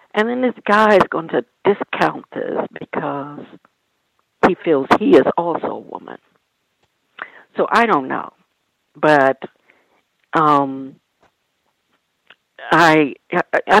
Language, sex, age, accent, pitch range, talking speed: English, female, 60-79, American, 155-240 Hz, 100 wpm